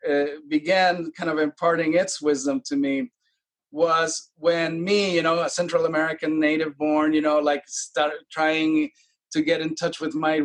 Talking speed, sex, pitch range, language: 170 wpm, male, 150-180 Hz, English